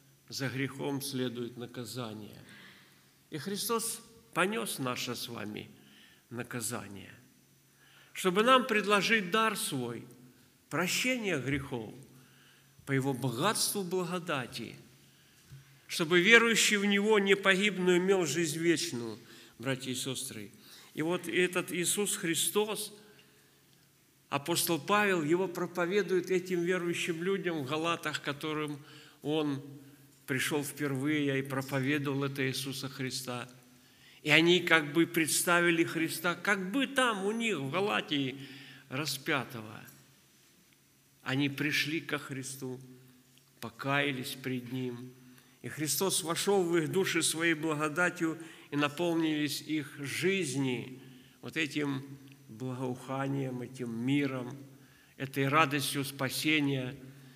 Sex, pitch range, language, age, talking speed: male, 130-175 Hz, Russian, 50-69, 105 wpm